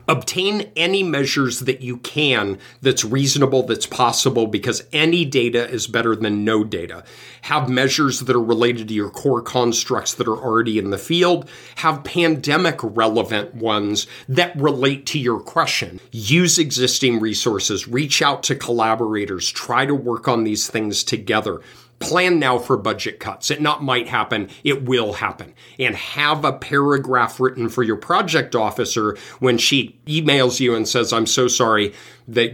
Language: English